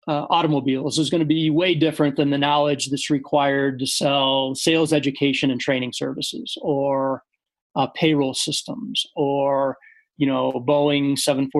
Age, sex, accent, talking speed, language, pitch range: 40-59, male, American, 145 wpm, English, 140-165 Hz